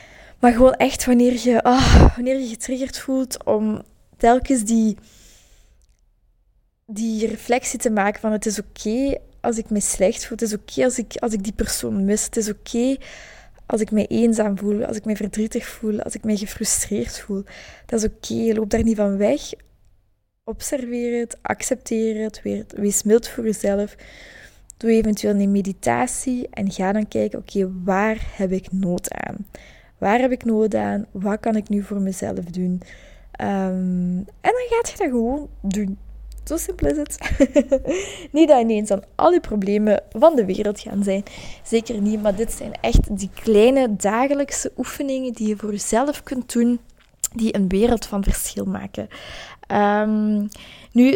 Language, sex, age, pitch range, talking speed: Dutch, female, 20-39, 205-255 Hz, 175 wpm